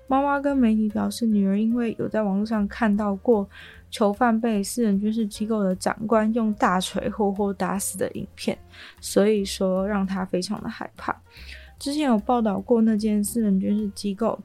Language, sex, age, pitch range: Chinese, female, 20-39, 195-230 Hz